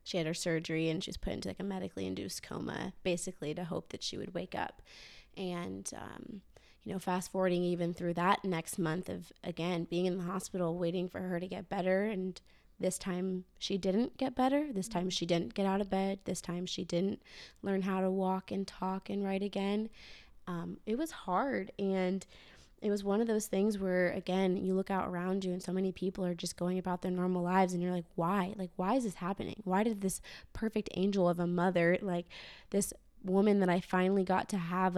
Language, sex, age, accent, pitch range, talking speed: English, female, 20-39, American, 175-195 Hz, 215 wpm